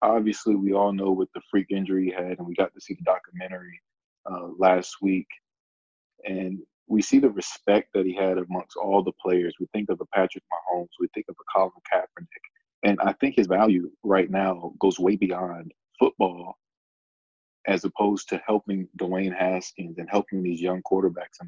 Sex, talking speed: male, 185 wpm